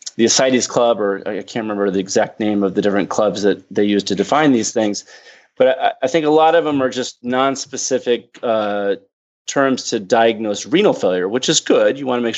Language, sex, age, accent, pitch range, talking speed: English, male, 30-49, American, 105-130 Hz, 220 wpm